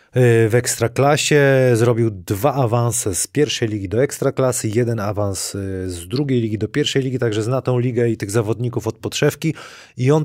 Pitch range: 110-130 Hz